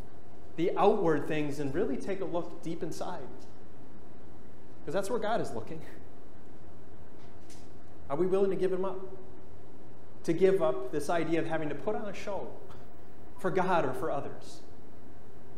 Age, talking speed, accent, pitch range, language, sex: 30-49, 155 wpm, American, 125-180 Hz, English, male